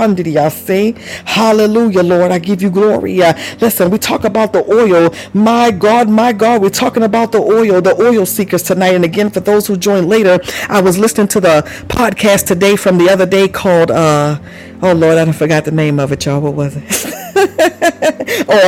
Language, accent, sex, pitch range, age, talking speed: English, American, female, 180-210 Hz, 50-69, 200 wpm